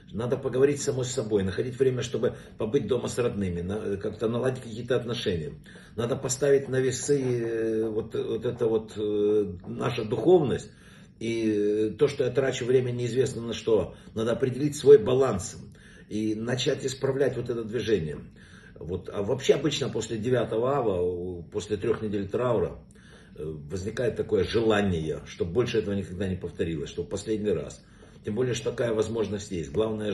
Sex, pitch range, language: male, 105-130 Hz, Russian